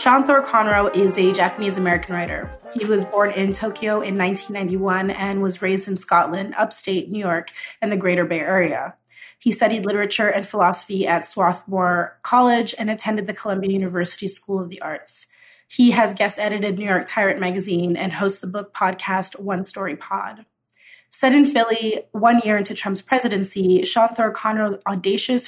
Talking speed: 165 wpm